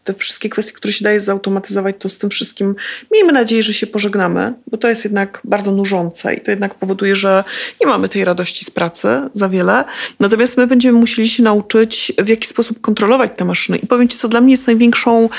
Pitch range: 195-235 Hz